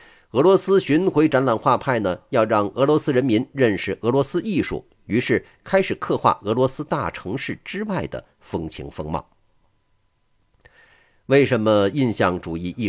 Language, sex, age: Chinese, male, 50-69